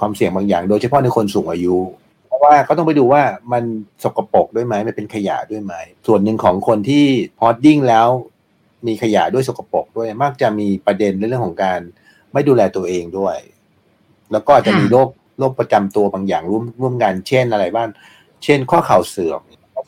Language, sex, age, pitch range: Thai, male, 60-79, 100-125 Hz